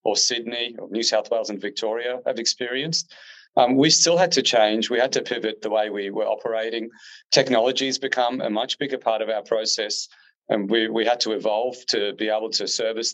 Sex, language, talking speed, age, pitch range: male, English, 210 wpm, 30-49, 110-135 Hz